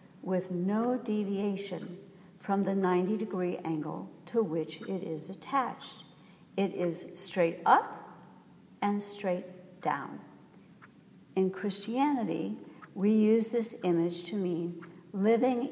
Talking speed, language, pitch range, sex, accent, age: 105 wpm, English, 170-210 Hz, female, American, 60-79